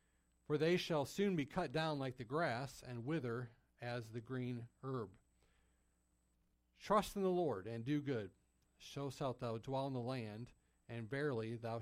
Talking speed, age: 170 wpm, 40-59